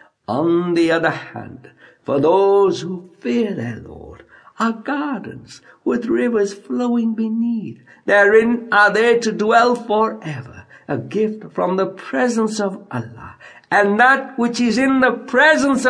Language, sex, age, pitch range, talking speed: English, male, 60-79, 200-265 Hz, 135 wpm